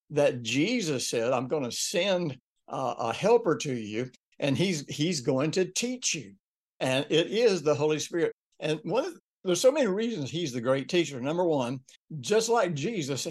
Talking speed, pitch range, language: 190 wpm, 130-175 Hz, English